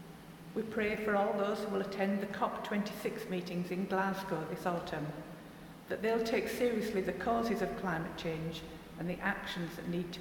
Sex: female